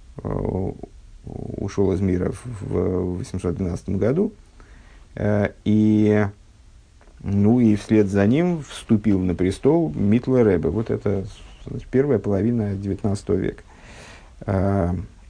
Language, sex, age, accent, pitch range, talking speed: Russian, male, 50-69, native, 95-110 Hz, 85 wpm